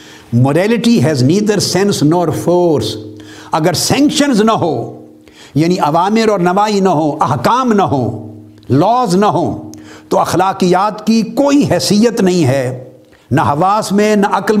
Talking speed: 140 wpm